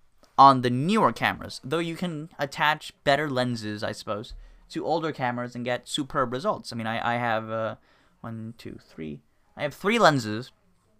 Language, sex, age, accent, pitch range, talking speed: English, male, 10-29, American, 115-145 Hz, 175 wpm